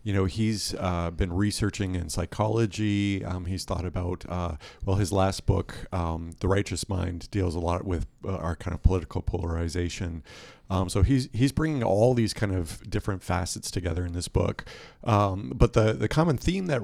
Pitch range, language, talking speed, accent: 90-105 Hz, English, 190 wpm, American